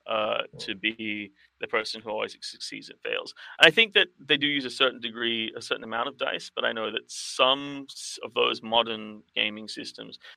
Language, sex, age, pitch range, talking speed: English, male, 30-49, 105-130 Hz, 195 wpm